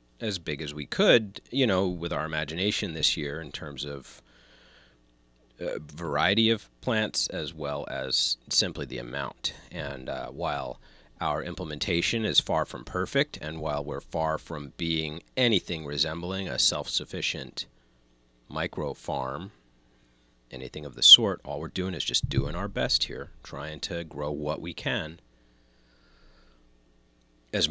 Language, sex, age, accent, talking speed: English, male, 40-59, American, 145 wpm